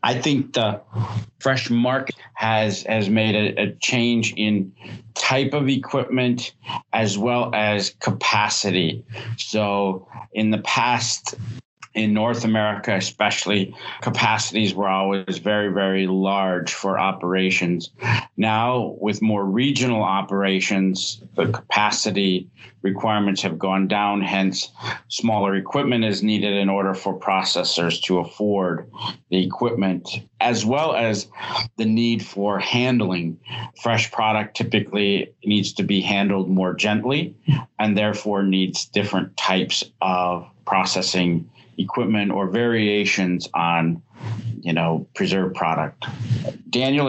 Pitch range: 95-115 Hz